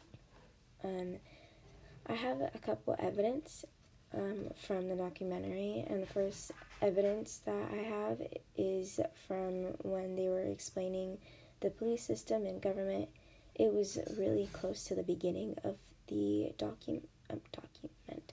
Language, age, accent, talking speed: English, 10-29, American, 125 wpm